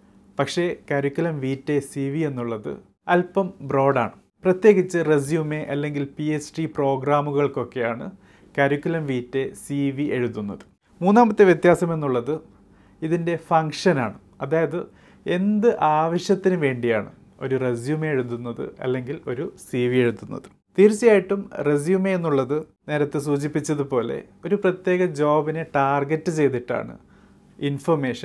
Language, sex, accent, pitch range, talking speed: Malayalam, male, native, 125-165 Hz, 100 wpm